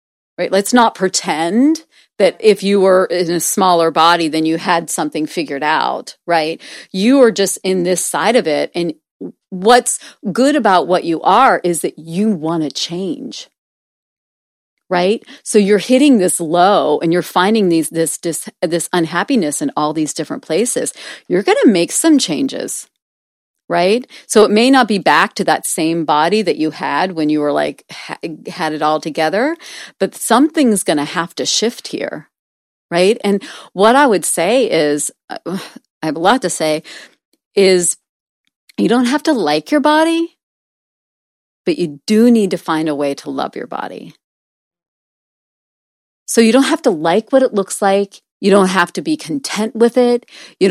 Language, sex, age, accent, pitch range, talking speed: English, female, 40-59, American, 165-230 Hz, 175 wpm